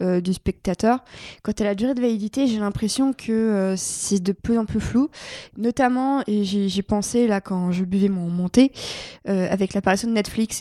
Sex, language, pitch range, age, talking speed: female, French, 195-230 Hz, 20-39, 200 wpm